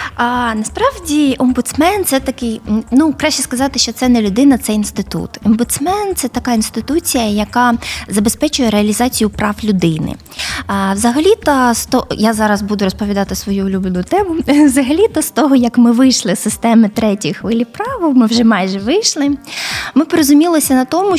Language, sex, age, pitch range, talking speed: Ukrainian, female, 20-39, 210-270 Hz, 155 wpm